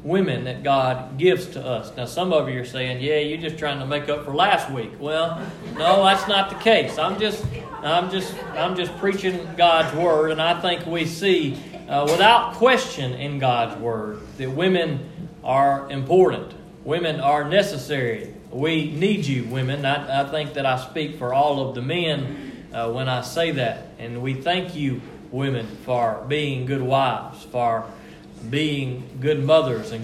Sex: male